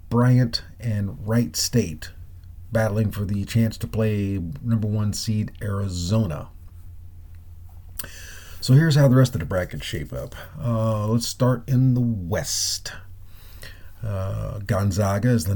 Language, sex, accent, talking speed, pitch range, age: English, male, American, 130 wpm, 95-120 Hz, 40-59